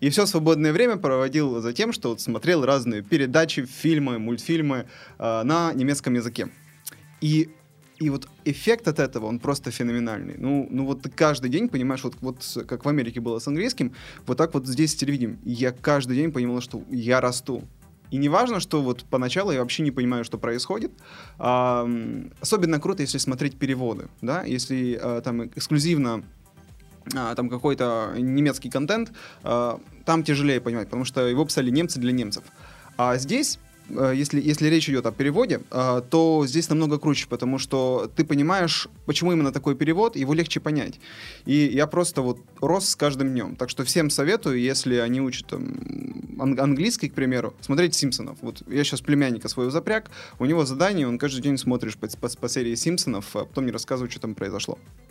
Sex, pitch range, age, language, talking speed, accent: male, 125-155 Hz, 20-39, Russian, 170 wpm, native